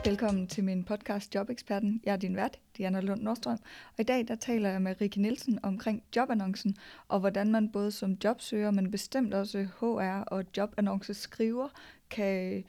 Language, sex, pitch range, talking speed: Danish, female, 195-225 Hz, 170 wpm